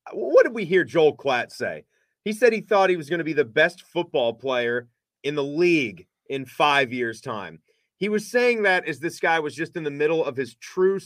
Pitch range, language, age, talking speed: 125-165 Hz, English, 30-49, 230 wpm